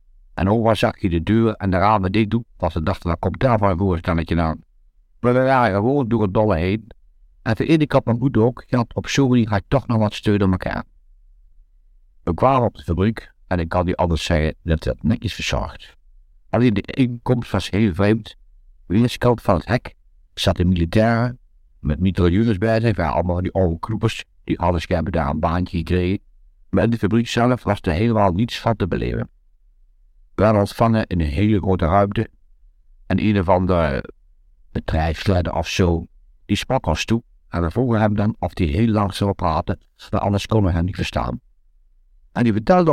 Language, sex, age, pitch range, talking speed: Dutch, male, 60-79, 80-110 Hz, 205 wpm